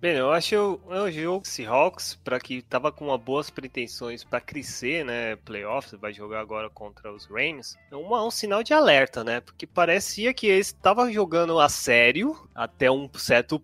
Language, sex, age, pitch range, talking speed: Portuguese, male, 20-39, 115-155 Hz, 190 wpm